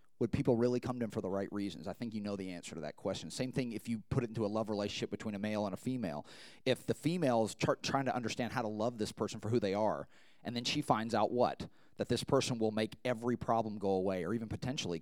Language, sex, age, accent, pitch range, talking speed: English, male, 30-49, American, 105-135 Hz, 275 wpm